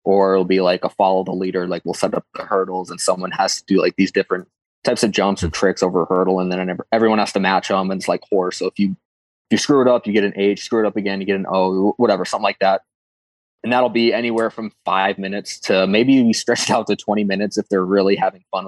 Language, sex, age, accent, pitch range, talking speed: English, male, 20-39, American, 95-105 Hz, 270 wpm